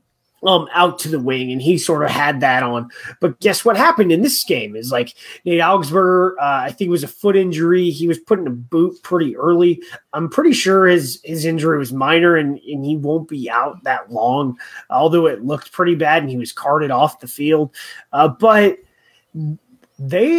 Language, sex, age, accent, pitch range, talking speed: English, male, 30-49, American, 145-200 Hz, 205 wpm